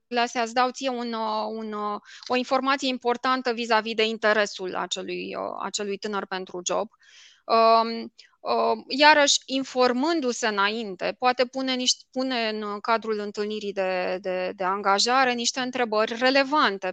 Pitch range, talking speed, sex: 210-255 Hz, 120 wpm, female